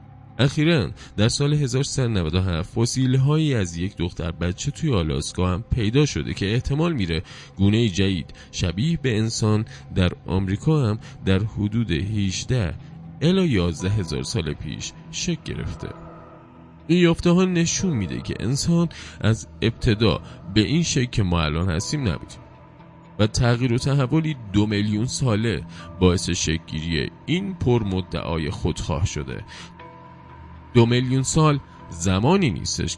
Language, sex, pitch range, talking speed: Persian, male, 90-130 Hz, 135 wpm